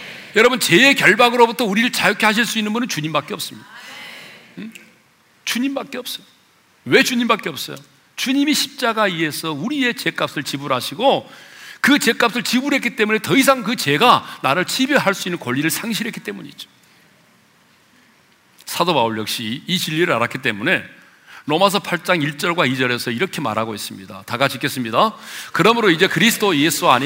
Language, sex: Korean, male